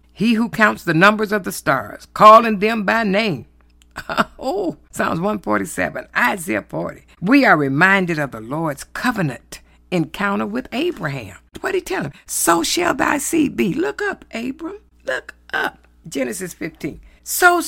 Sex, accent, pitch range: female, American, 170-265 Hz